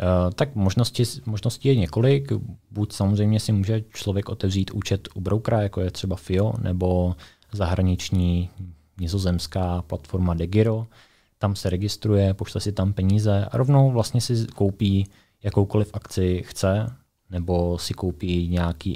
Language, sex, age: Czech, male, 20-39